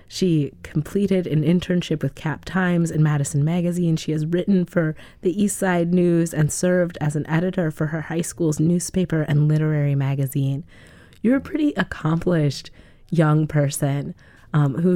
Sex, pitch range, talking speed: female, 135-160 Hz, 155 wpm